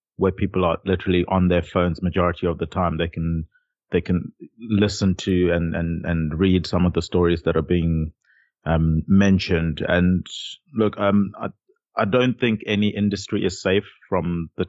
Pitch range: 85-95 Hz